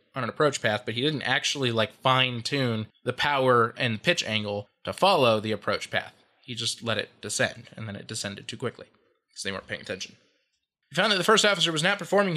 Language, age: English, 20-39